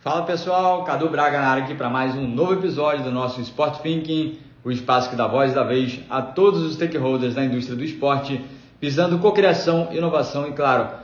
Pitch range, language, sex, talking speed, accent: 135-165 Hz, Portuguese, male, 190 wpm, Brazilian